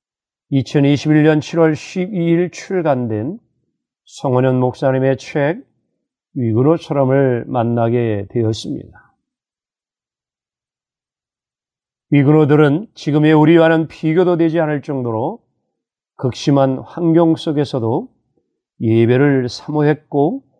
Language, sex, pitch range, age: Korean, male, 130-160 Hz, 40-59